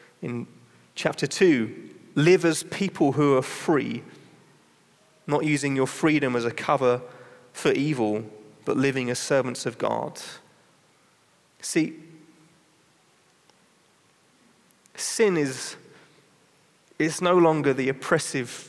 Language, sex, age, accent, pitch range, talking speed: English, male, 30-49, British, 120-150 Hz, 100 wpm